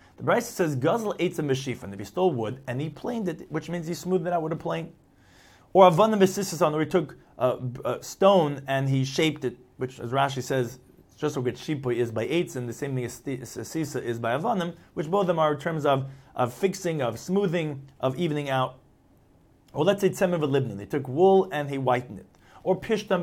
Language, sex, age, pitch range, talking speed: English, male, 30-49, 125-175 Hz, 220 wpm